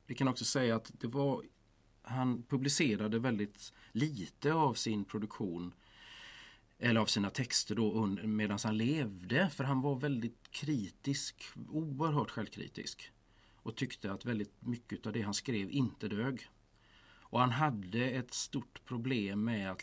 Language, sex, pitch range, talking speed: Swedish, male, 105-130 Hz, 140 wpm